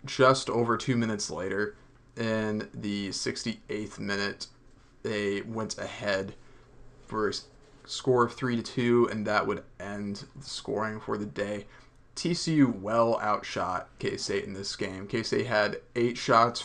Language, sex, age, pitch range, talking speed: English, male, 20-39, 110-135 Hz, 140 wpm